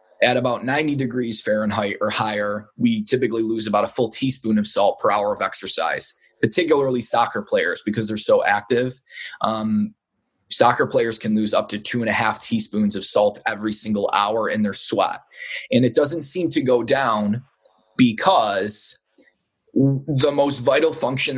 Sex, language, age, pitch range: male, English, 20-39, 110-135 Hz